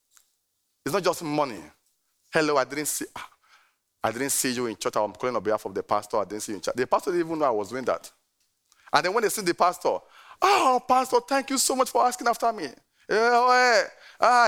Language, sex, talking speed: English, male, 230 wpm